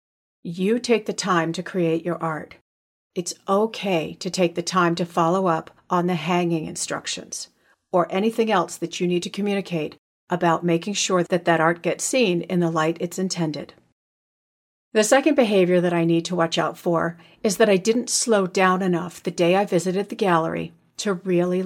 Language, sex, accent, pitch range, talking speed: English, female, American, 165-190 Hz, 185 wpm